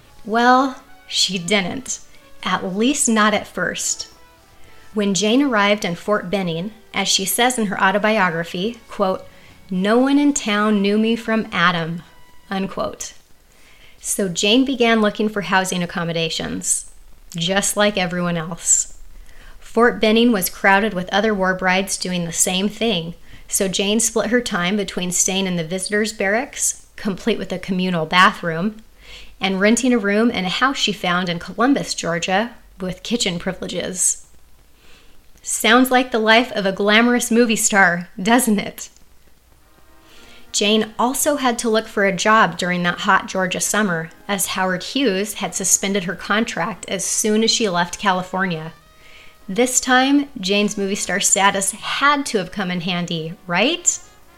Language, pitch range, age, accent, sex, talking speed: English, 185-225 Hz, 30-49, American, female, 150 wpm